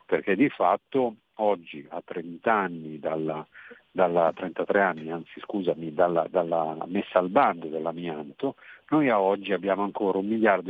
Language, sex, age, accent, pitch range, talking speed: Italian, male, 50-69, native, 85-115 Hz, 145 wpm